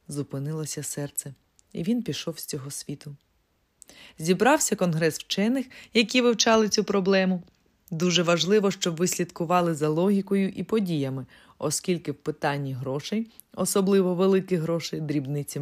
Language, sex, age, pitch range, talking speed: Ukrainian, female, 20-39, 150-200 Hz, 120 wpm